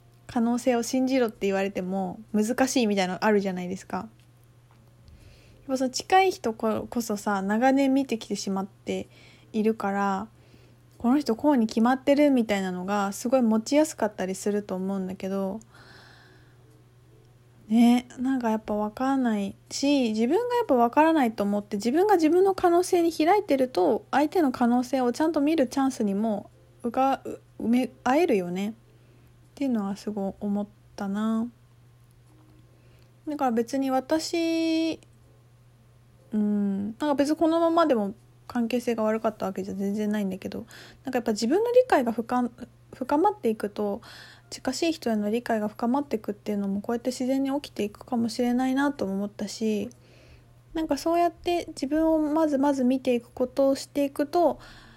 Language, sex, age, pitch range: Japanese, female, 20-39, 195-270 Hz